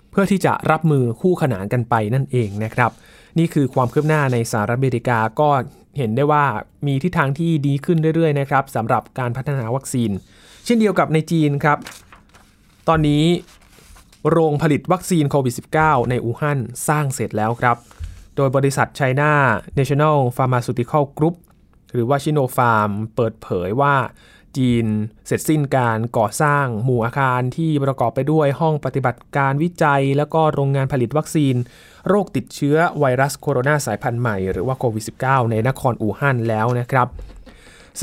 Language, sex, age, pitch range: Thai, male, 20-39, 120-150 Hz